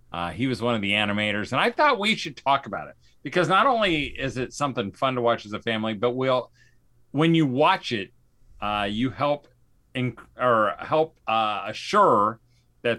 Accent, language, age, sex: American, English, 40-59, male